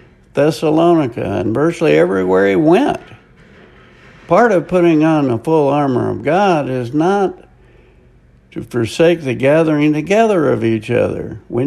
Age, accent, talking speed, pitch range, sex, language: 60-79, American, 135 wpm, 120-170 Hz, male, English